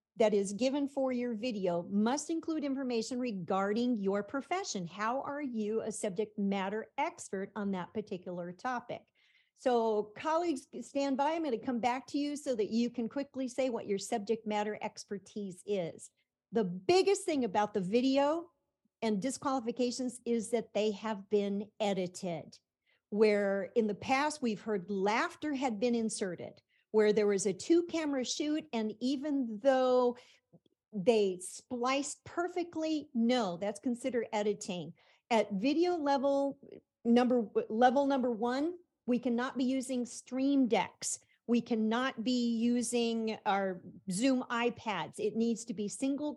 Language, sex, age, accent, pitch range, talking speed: English, female, 50-69, American, 210-265 Hz, 145 wpm